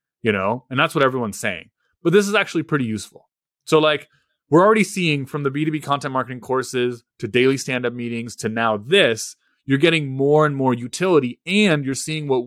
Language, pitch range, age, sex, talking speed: English, 100-140 Hz, 30-49, male, 210 wpm